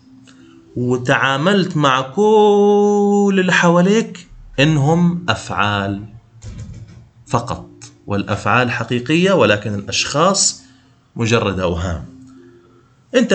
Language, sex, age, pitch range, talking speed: Arabic, male, 30-49, 120-170 Hz, 65 wpm